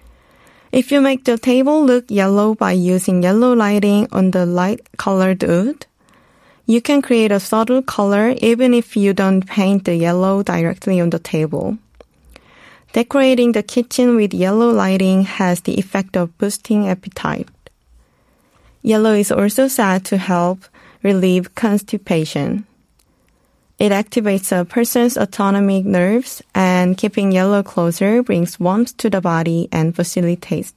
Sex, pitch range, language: female, 185-230 Hz, Korean